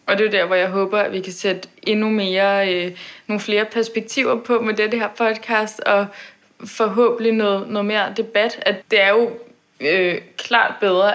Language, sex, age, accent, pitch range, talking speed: Danish, female, 20-39, native, 190-225 Hz, 190 wpm